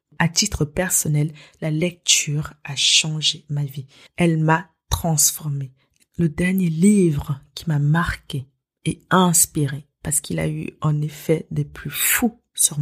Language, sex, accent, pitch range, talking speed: French, female, French, 150-180 Hz, 140 wpm